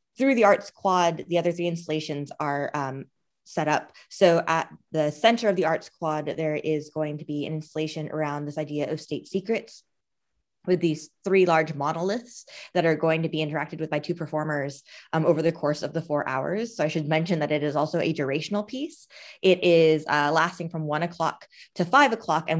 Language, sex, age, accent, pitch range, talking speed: English, female, 20-39, American, 155-180 Hz, 205 wpm